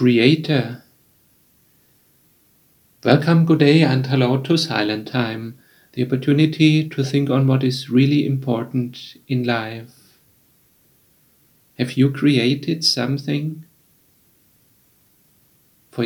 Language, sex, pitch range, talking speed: English, male, 125-145 Hz, 95 wpm